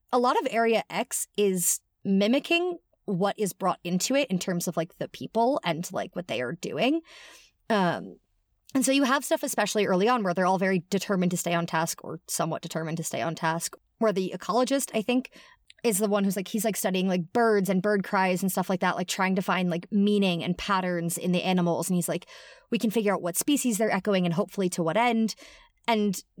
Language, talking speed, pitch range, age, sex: English, 225 wpm, 180-235 Hz, 30-49, female